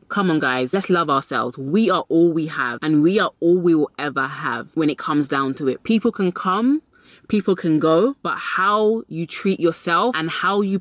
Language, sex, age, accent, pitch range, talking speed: English, female, 20-39, British, 150-210 Hz, 215 wpm